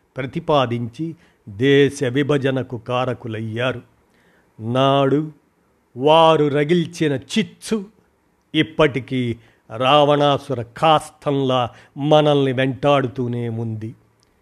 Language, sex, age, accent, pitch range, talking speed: Telugu, male, 50-69, native, 125-155 Hz, 60 wpm